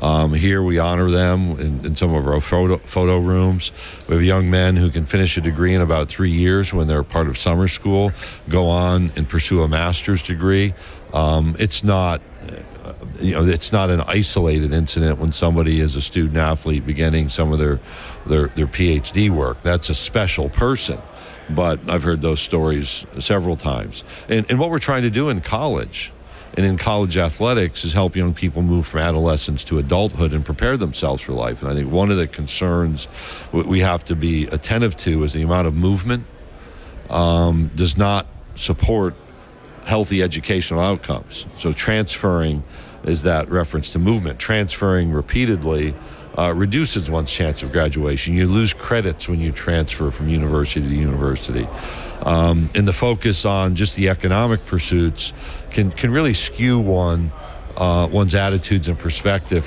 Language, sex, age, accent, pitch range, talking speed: English, male, 60-79, American, 80-95 Hz, 170 wpm